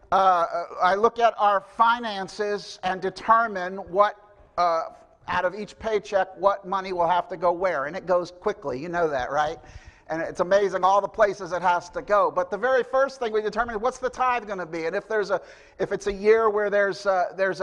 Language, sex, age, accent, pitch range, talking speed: English, male, 60-79, American, 185-220 Hz, 220 wpm